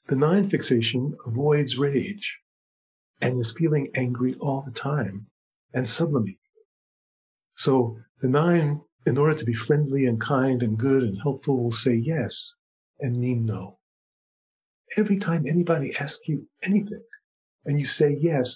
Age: 50-69